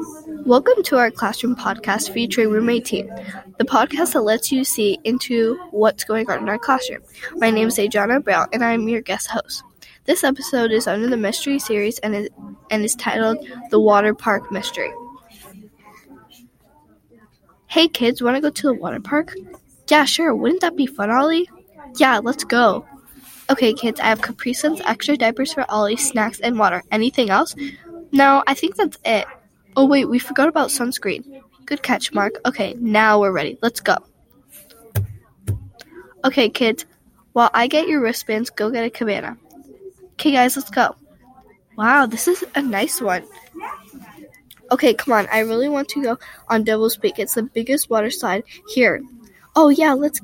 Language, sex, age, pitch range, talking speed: English, female, 10-29, 220-280 Hz, 170 wpm